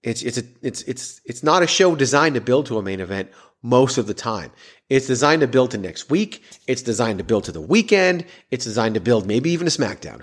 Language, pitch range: English, 100-130 Hz